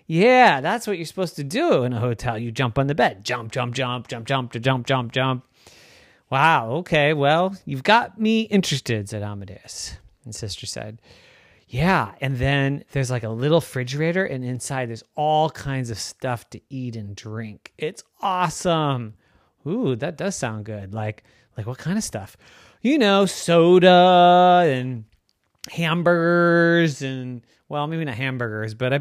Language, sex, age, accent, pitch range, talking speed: English, male, 30-49, American, 115-170 Hz, 165 wpm